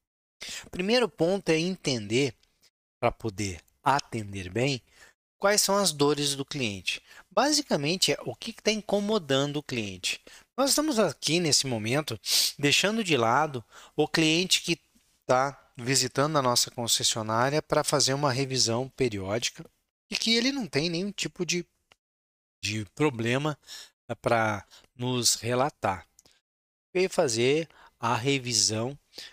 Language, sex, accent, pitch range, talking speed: Portuguese, male, Brazilian, 115-165 Hz, 125 wpm